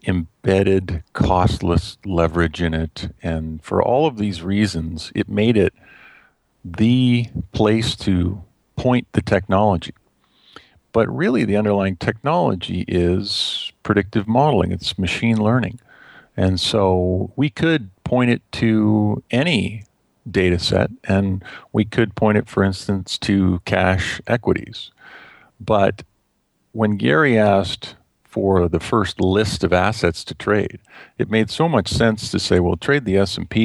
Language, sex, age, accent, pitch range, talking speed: English, male, 50-69, American, 95-115 Hz, 130 wpm